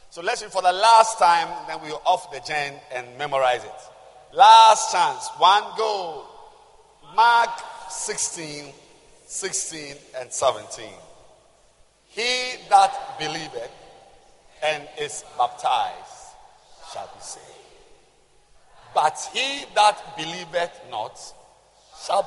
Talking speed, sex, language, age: 105 wpm, male, English, 50-69